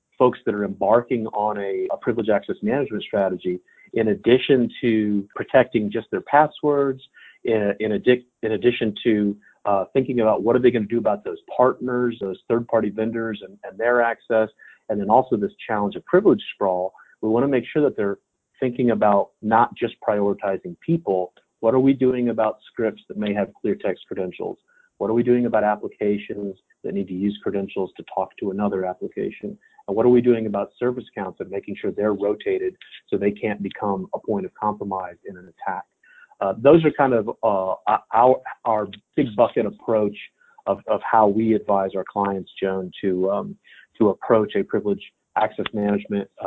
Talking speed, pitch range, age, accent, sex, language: 180 wpm, 100-125 Hz, 40-59, American, male, English